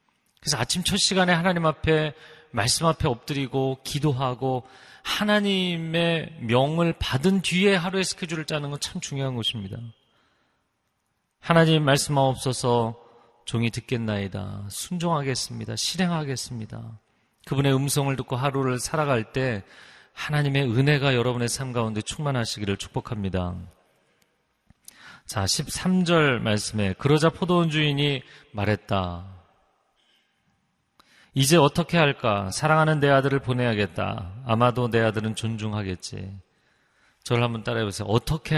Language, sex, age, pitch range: Korean, male, 40-59, 115-165 Hz